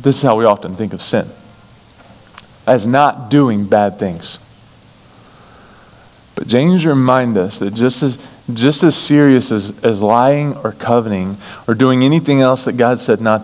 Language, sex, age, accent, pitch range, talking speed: English, male, 40-59, American, 125-195 Hz, 160 wpm